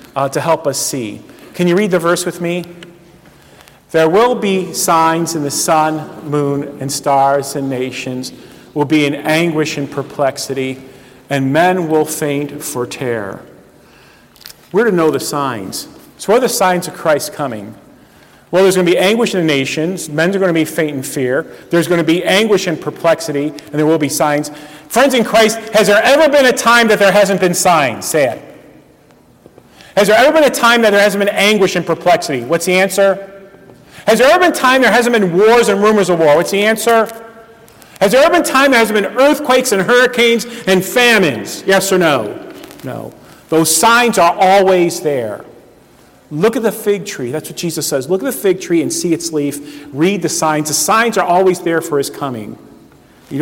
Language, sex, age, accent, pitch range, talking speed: English, male, 40-59, American, 150-210 Hz, 200 wpm